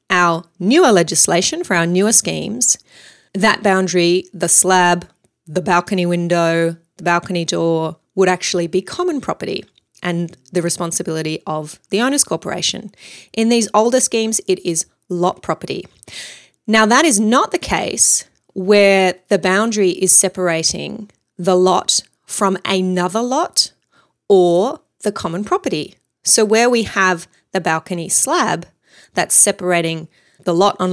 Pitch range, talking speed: 170-200 Hz, 135 wpm